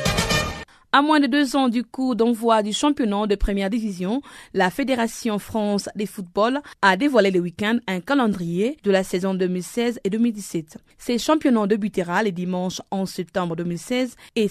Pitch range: 205-255 Hz